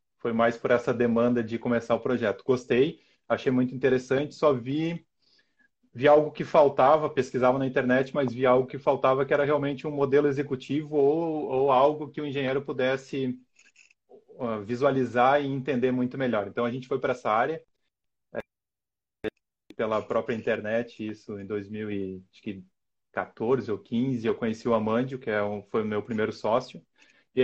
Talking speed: 160 wpm